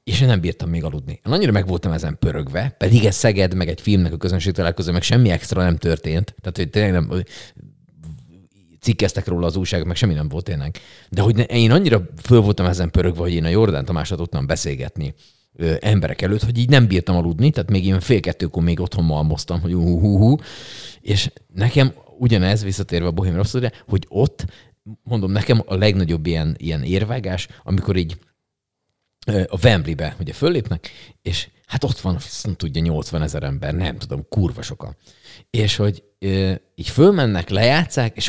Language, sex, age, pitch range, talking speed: Hungarian, male, 30-49, 85-115 Hz, 180 wpm